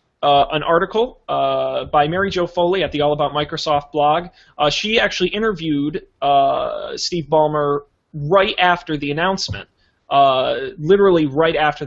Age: 20-39